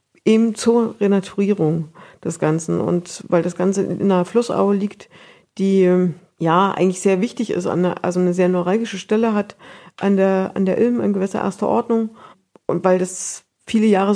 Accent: German